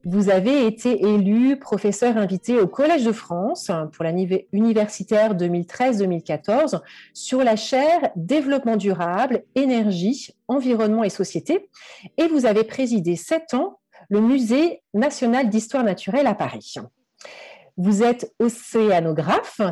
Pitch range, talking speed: 185-255 Hz, 120 wpm